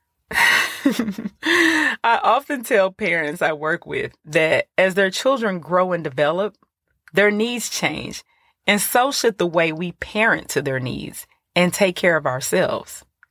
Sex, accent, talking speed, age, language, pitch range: female, American, 145 wpm, 30-49, English, 160-235 Hz